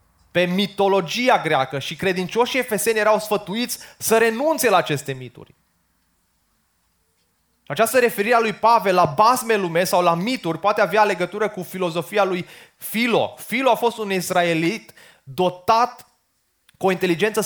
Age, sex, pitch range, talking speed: 20-39, male, 170-220 Hz, 140 wpm